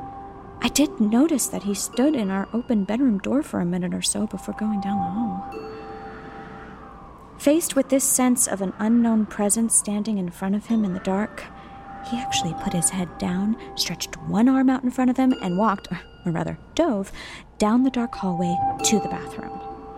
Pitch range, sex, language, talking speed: 180-255 Hz, female, English, 190 wpm